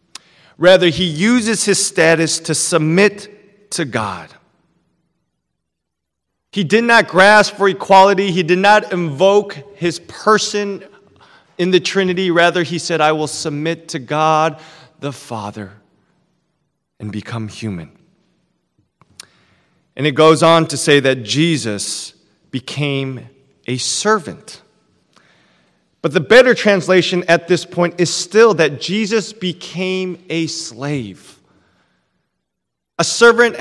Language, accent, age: English, American, 30-49